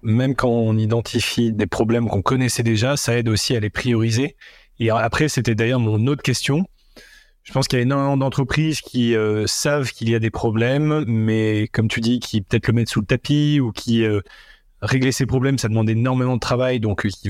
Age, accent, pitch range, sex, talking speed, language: 30-49, French, 110-130 Hz, male, 210 wpm, English